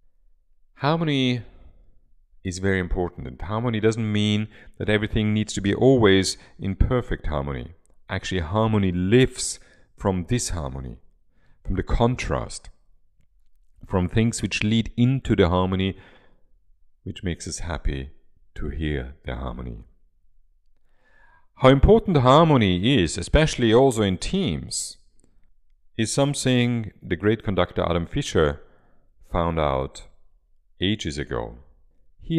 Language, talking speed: English, 110 wpm